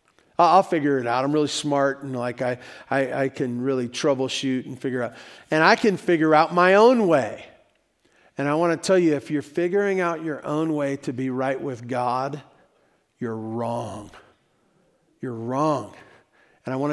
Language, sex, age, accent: English, male, 50-69, American